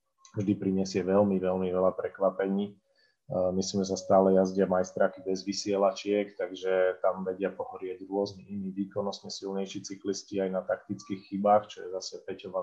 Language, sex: Slovak, male